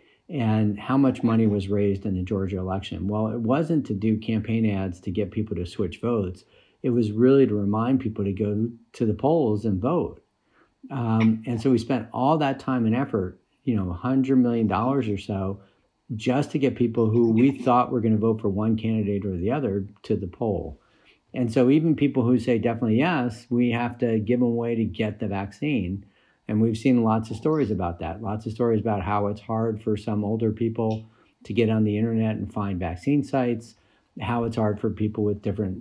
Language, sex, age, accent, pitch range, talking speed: English, male, 50-69, American, 105-120 Hz, 215 wpm